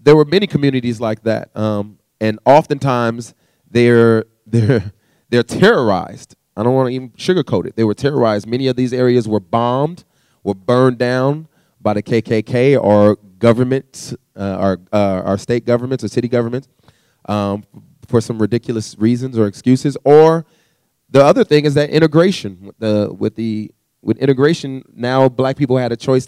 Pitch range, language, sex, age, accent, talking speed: 110-135 Hz, English, male, 30-49, American, 160 wpm